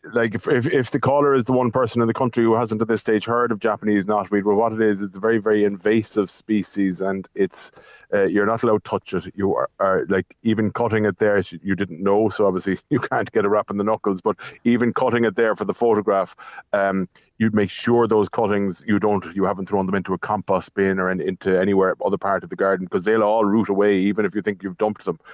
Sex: male